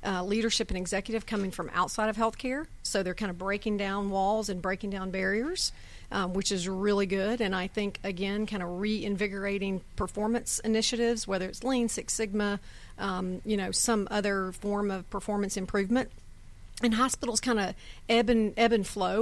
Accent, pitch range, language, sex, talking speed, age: American, 195-220 Hz, English, female, 175 wpm, 40-59